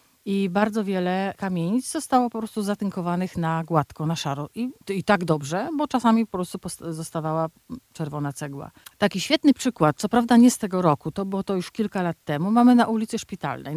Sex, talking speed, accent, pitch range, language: female, 185 wpm, native, 160-205 Hz, Polish